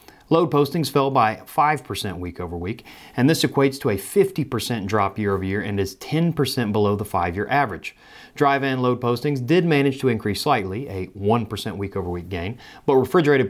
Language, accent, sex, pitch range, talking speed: English, American, male, 100-140 Hz, 160 wpm